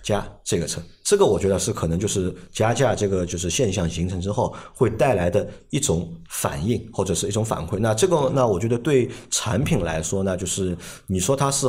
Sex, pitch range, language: male, 90-125 Hz, Chinese